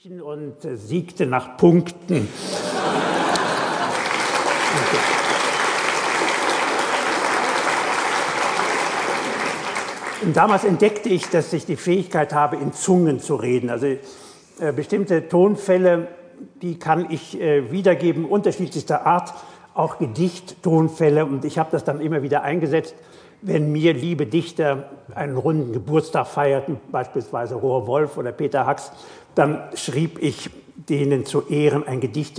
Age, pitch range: 60-79, 140-175 Hz